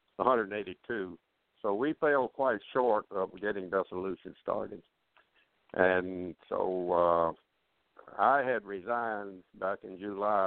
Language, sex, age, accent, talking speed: English, male, 60-79, American, 110 wpm